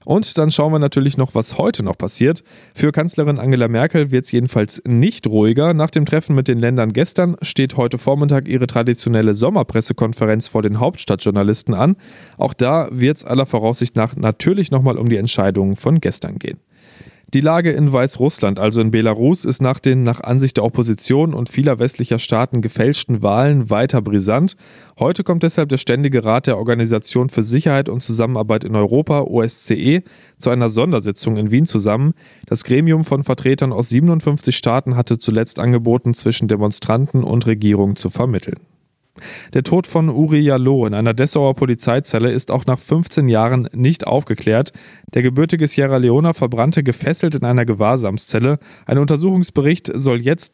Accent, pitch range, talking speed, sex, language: German, 115-150 Hz, 165 wpm, male, German